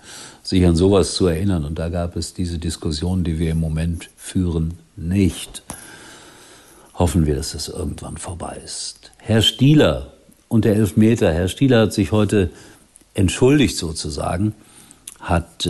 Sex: male